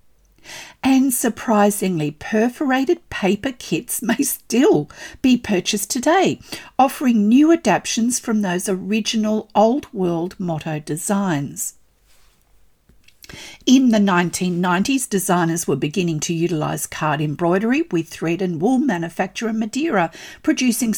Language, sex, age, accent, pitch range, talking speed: English, female, 50-69, Australian, 175-230 Hz, 105 wpm